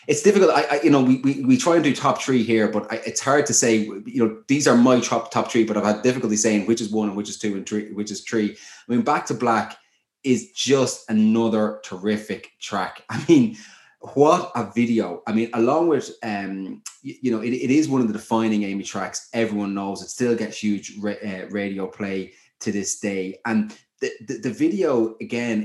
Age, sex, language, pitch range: 20-39, male, English, 100-120 Hz